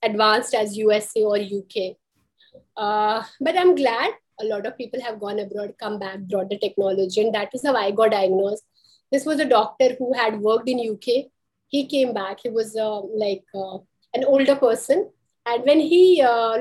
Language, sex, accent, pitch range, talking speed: Hindi, female, native, 220-315 Hz, 190 wpm